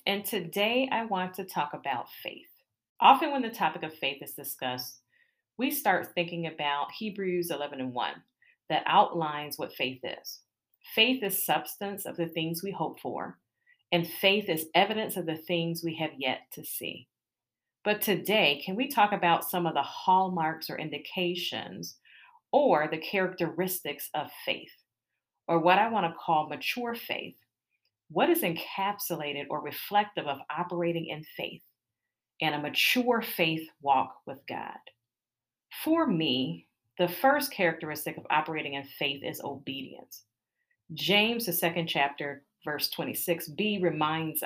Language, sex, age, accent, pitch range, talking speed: English, female, 40-59, American, 155-205 Hz, 145 wpm